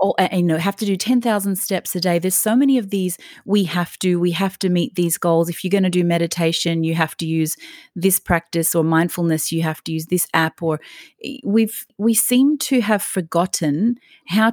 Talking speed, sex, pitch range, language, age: 215 wpm, female, 165-210 Hz, English, 30-49